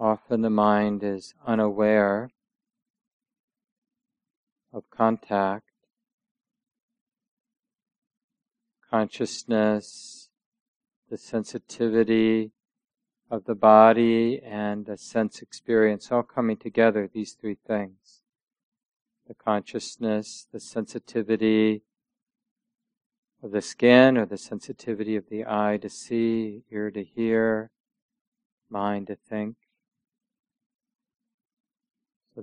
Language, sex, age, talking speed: English, male, 50-69, 85 wpm